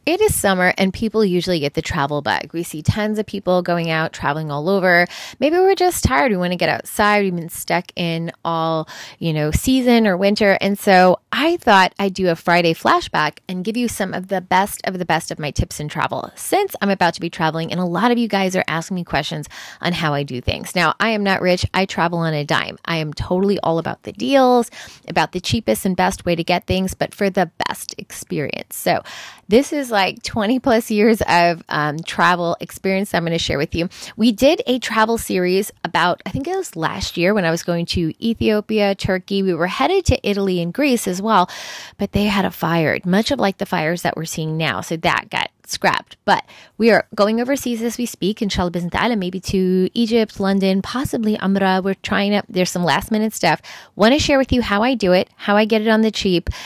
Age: 20-39